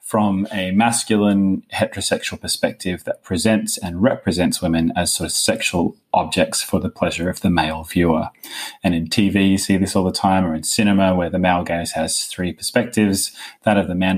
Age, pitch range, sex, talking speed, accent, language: 20-39, 85-105 Hz, male, 190 wpm, Australian, English